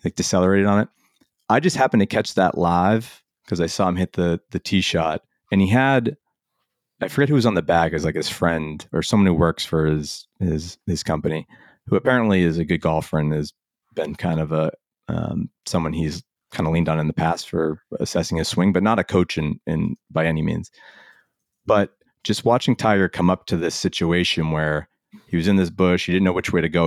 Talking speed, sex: 225 wpm, male